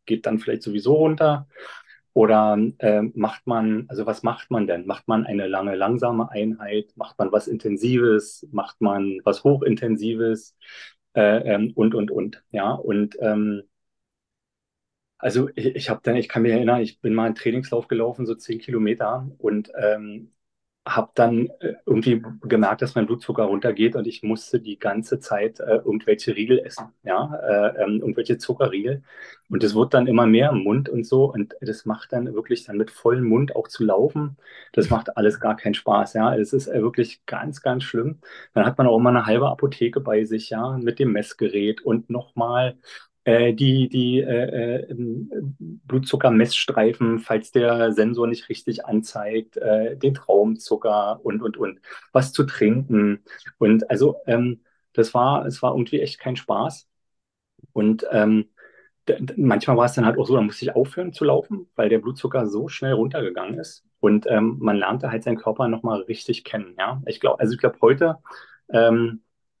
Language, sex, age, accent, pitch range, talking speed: German, male, 30-49, German, 110-125 Hz, 175 wpm